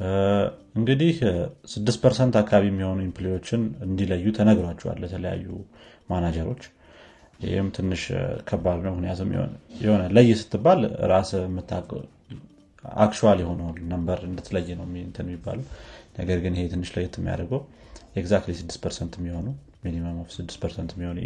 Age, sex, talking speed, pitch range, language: 30-49, male, 105 wpm, 85-105 Hz, Amharic